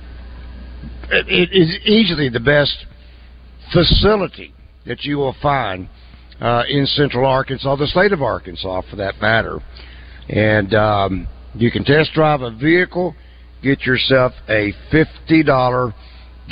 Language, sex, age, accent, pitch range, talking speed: English, male, 60-79, American, 95-155 Hz, 120 wpm